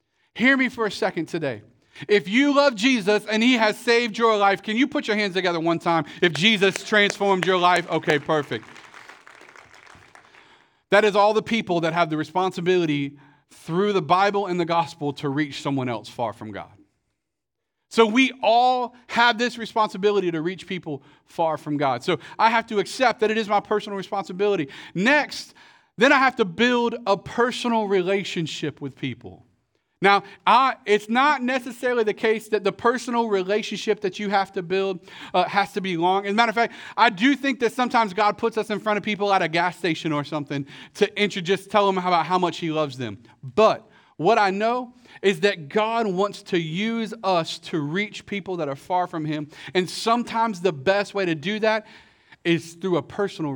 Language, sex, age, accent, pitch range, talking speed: English, male, 40-59, American, 170-220 Hz, 190 wpm